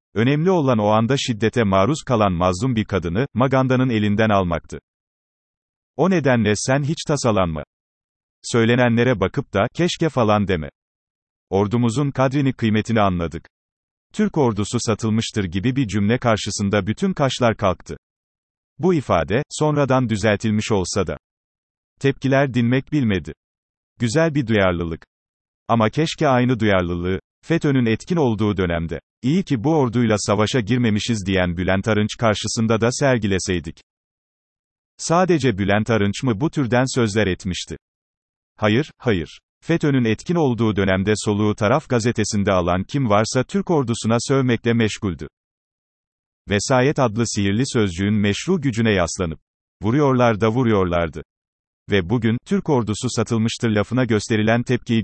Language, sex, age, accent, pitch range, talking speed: Turkish, male, 40-59, native, 100-130 Hz, 120 wpm